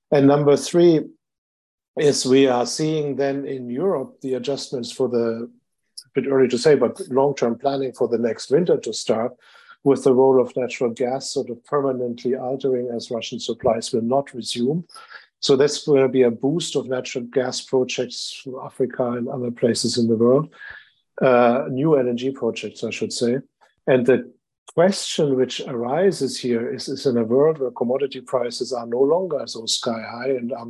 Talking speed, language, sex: 180 wpm, English, male